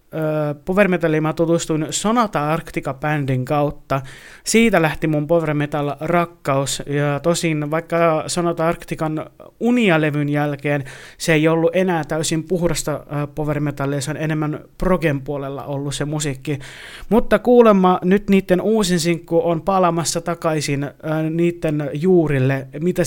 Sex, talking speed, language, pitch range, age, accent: male, 115 wpm, Finnish, 140-170 Hz, 30-49, native